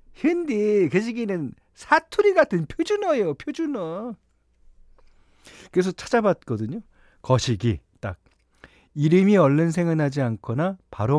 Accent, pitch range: native, 110-165 Hz